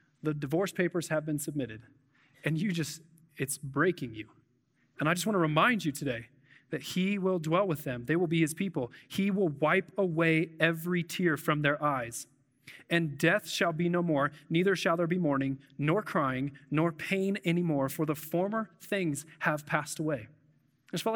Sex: male